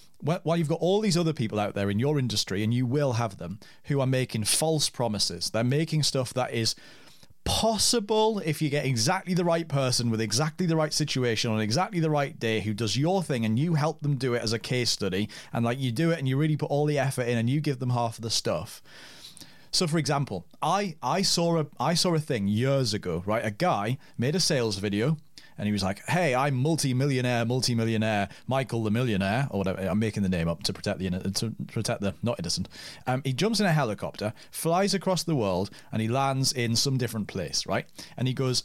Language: English